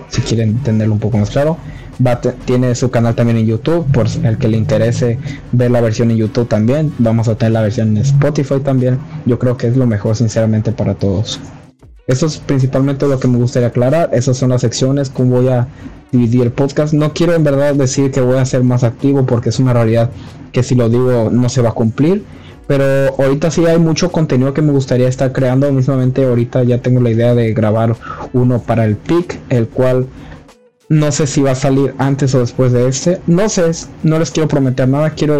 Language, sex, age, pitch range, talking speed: Spanish, male, 20-39, 120-140 Hz, 220 wpm